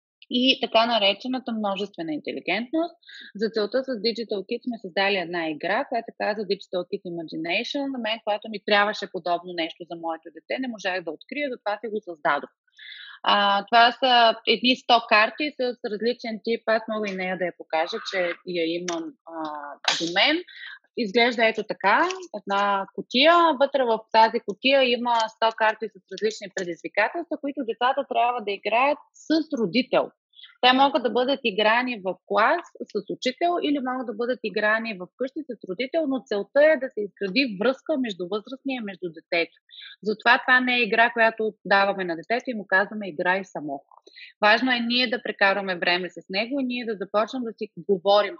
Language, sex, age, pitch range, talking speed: Bulgarian, female, 20-39, 195-255 Hz, 175 wpm